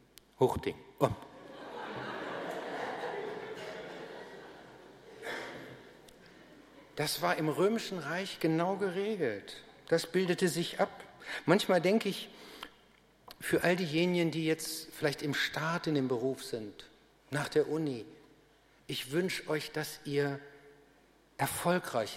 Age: 60-79